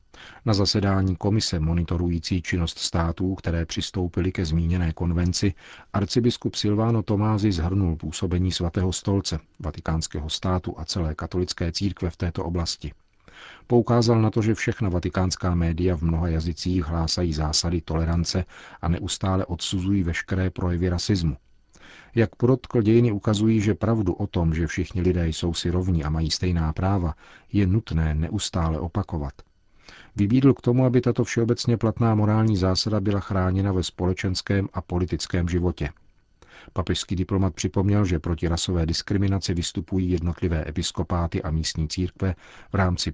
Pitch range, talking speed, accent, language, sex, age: 85-100 Hz, 140 wpm, native, Czech, male, 40-59